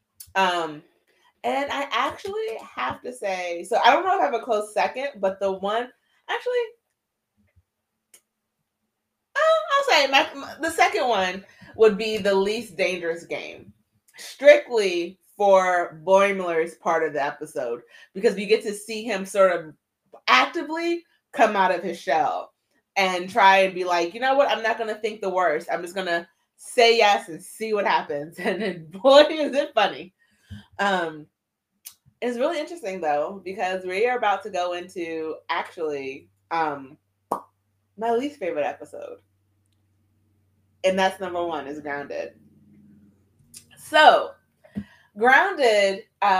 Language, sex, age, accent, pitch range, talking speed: English, female, 30-49, American, 160-220 Hz, 140 wpm